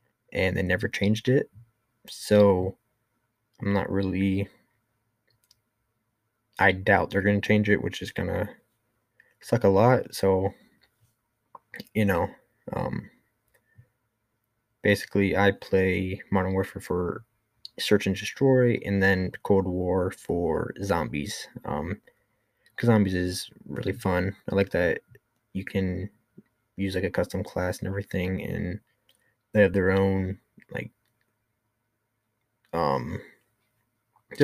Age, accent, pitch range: 20-39, American, 95-115 Hz